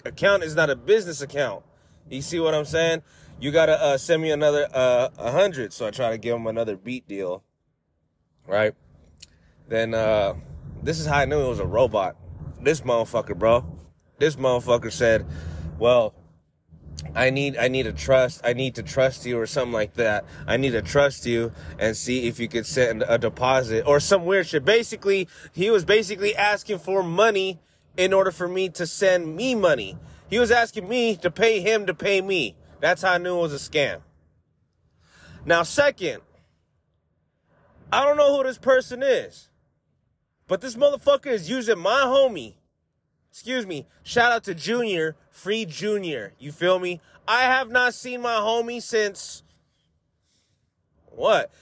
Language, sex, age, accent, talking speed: English, male, 20-39, American, 170 wpm